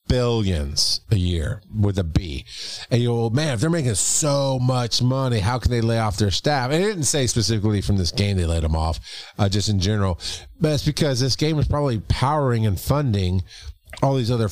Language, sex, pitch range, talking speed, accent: English, male, 100-140 Hz, 215 wpm, American